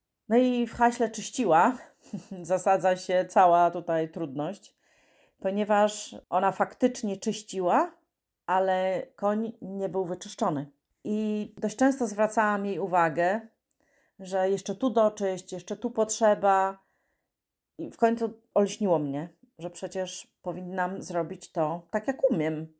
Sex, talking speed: female, 120 wpm